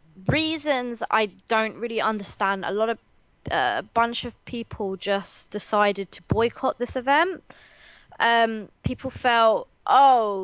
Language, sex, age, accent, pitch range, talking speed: English, female, 20-39, British, 200-260 Hz, 130 wpm